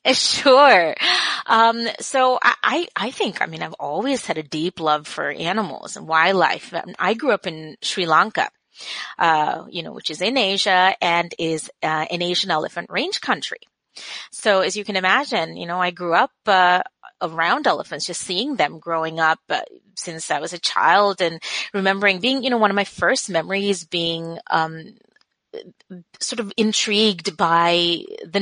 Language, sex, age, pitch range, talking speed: English, female, 30-49, 175-245 Hz, 170 wpm